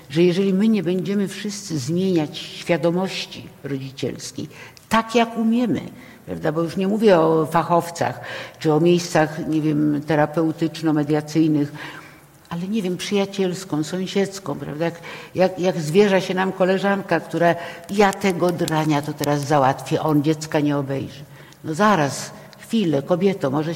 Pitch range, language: 155-190 Hz, Polish